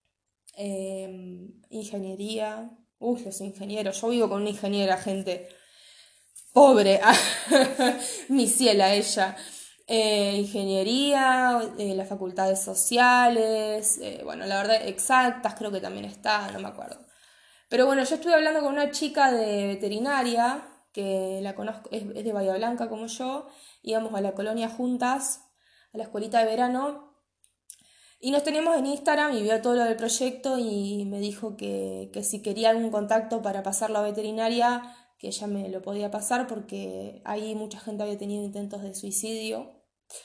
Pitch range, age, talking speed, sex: 205-250 Hz, 20-39, 155 wpm, female